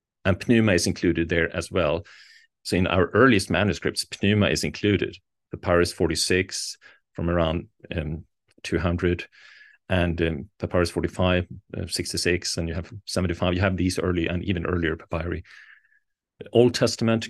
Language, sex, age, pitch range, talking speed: English, male, 40-59, 85-110 Hz, 140 wpm